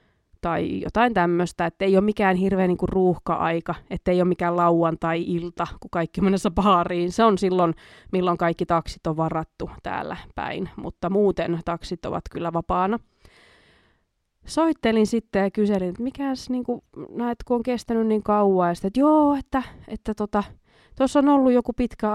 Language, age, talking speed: Finnish, 20-39, 165 wpm